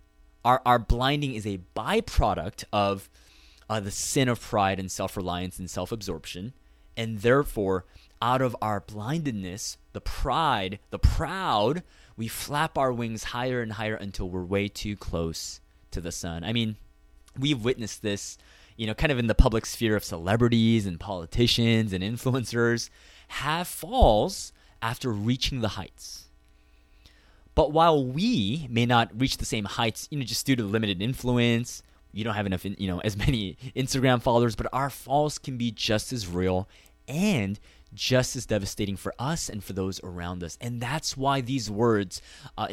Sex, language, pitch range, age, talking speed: male, English, 90-125 Hz, 20-39, 165 wpm